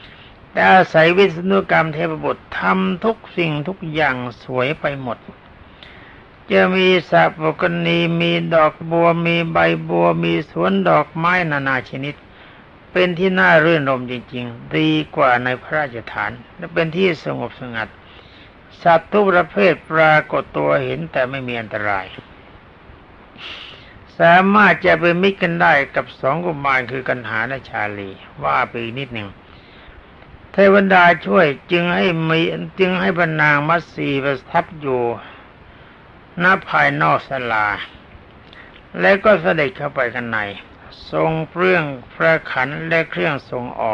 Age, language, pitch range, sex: 60-79, Thai, 120-175 Hz, male